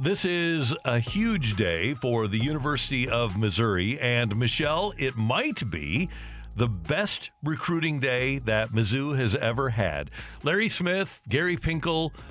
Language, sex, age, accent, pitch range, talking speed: English, male, 50-69, American, 110-150 Hz, 135 wpm